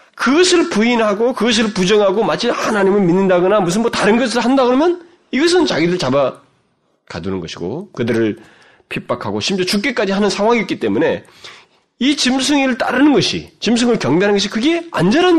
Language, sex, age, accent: Korean, male, 40-59, native